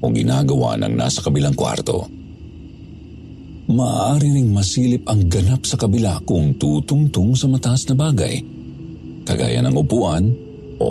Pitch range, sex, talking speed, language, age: 80-110 Hz, male, 125 wpm, Filipino, 50-69